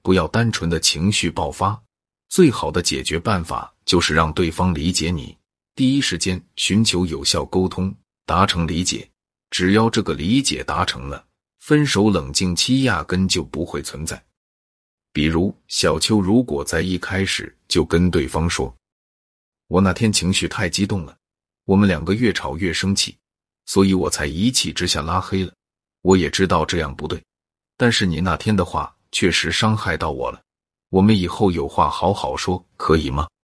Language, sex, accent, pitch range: Chinese, male, native, 80-105 Hz